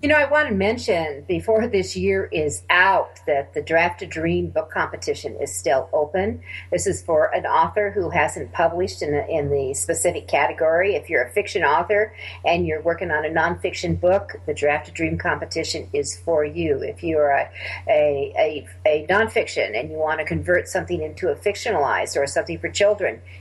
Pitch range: 145-185 Hz